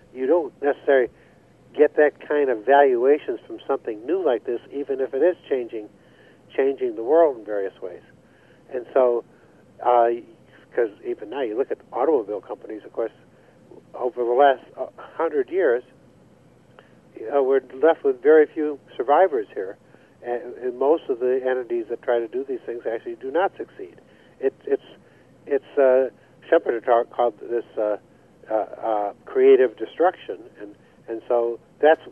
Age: 60-79